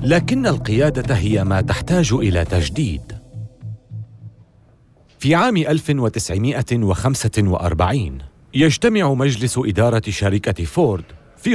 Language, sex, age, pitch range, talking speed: Arabic, male, 40-59, 95-150 Hz, 85 wpm